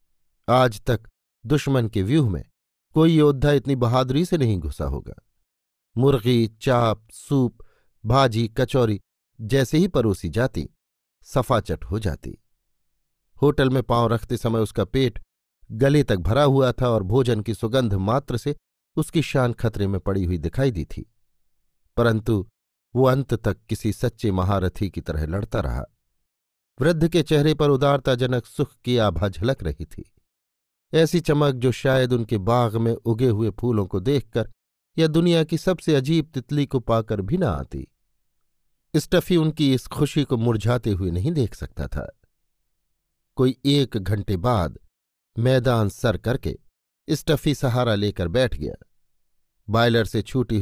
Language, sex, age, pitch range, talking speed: Hindi, male, 50-69, 100-135 Hz, 145 wpm